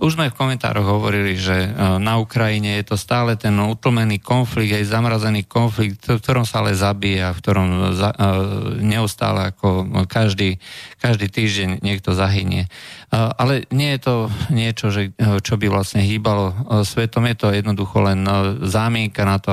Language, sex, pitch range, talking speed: Slovak, male, 100-120 Hz, 155 wpm